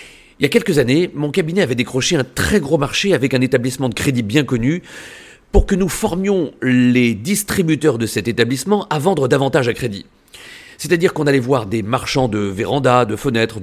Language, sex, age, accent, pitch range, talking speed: French, male, 40-59, French, 125-165 Hz, 195 wpm